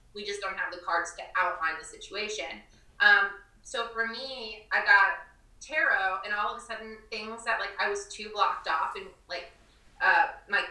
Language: English